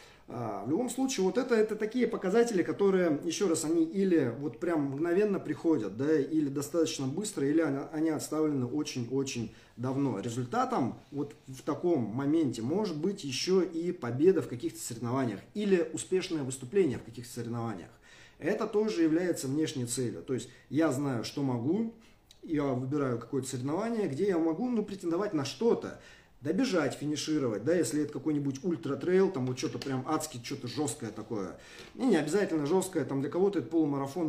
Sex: male